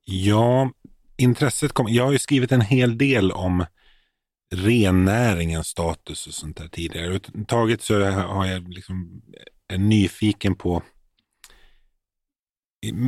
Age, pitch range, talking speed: 30-49, 90-110 Hz, 125 wpm